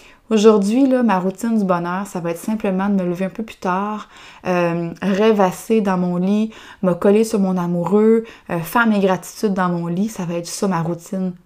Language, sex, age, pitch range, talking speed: French, female, 20-39, 185-220 Hz, 210 wpm